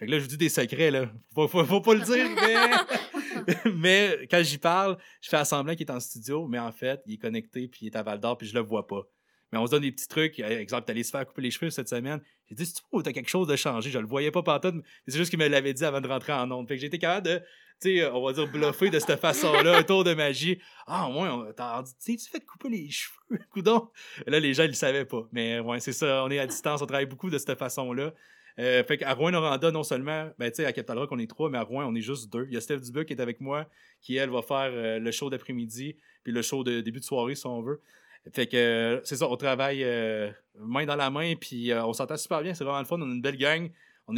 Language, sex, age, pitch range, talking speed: French, male, 30-49, 125-155 Hz, 295 wpm